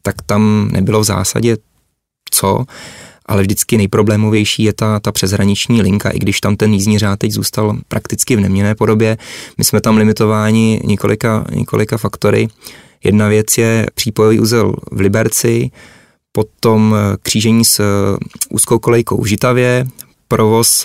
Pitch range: 105-115 Hz